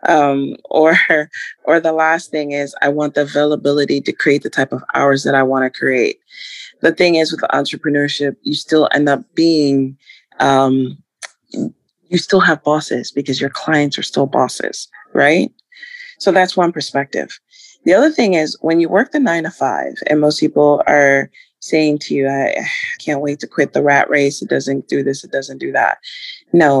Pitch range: 140-185 Hz